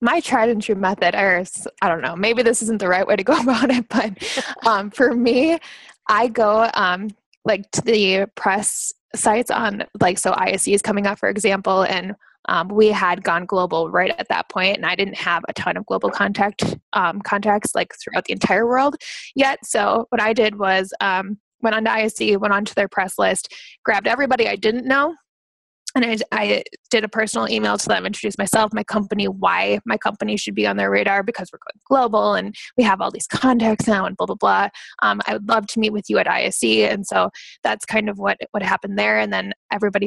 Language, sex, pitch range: English, female, 190-230 Hz